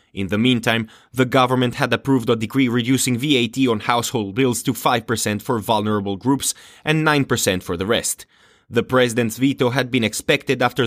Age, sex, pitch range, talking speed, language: 30-49, male, 110-130 Hz, 170 wpm, English